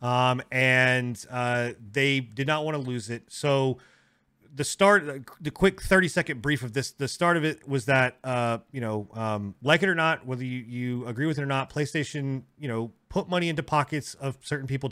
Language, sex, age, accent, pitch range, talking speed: English, male, 30-49, American, 120-150 Hz, 205 wpm